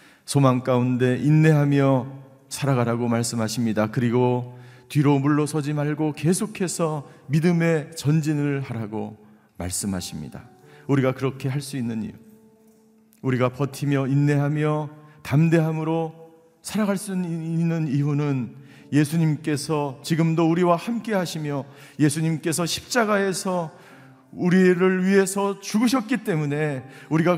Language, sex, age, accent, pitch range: Korean, male, 40-59, native, 145-200 Hz